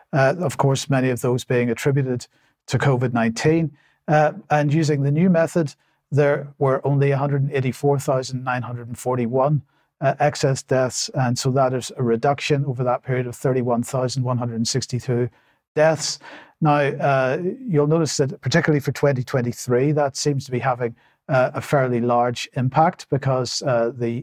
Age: 50-69